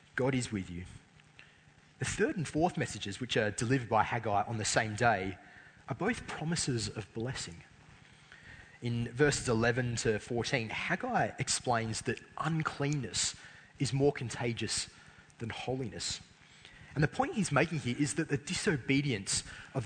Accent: Australian